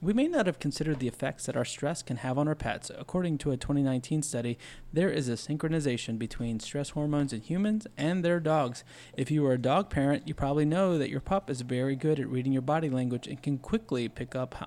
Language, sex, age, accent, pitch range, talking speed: English, male, 30-49, American, 130-175 Hz, 235 wpm